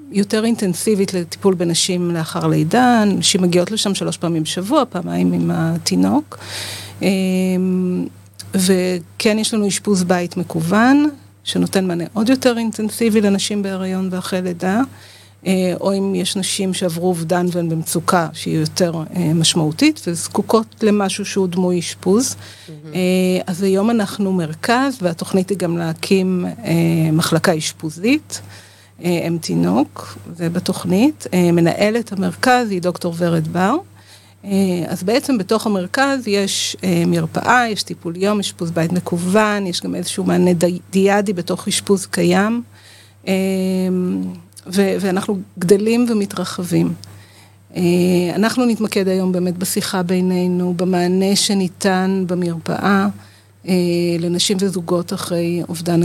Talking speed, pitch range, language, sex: 110 wpm, 170-195 Hz, Hebrew, female